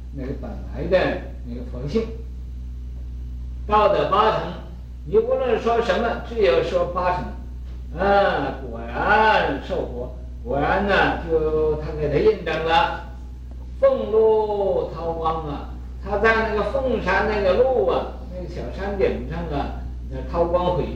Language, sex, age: Chinese, male, 60-79